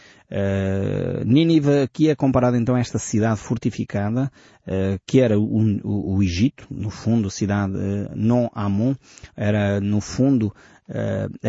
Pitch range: 105-125 Hz